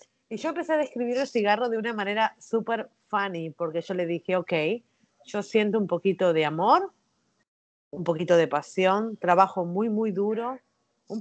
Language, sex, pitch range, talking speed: English, female, 185-230 Hz, 170 wpm